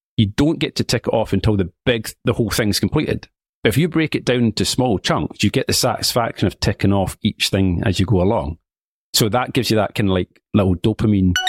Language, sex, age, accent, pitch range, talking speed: English, male, 40-59, British, 95-125 Hz, 235 wpm